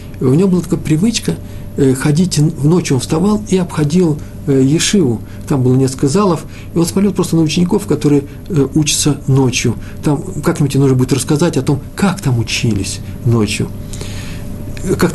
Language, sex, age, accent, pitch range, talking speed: Russian, male, 50-69, native, 110-155 Hz, 155 wpm